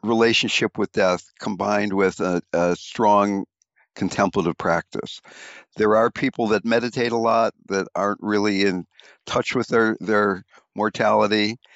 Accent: American